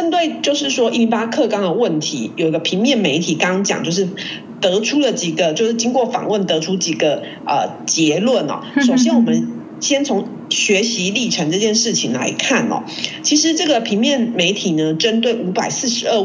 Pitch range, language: 185-255 Hz, Chinese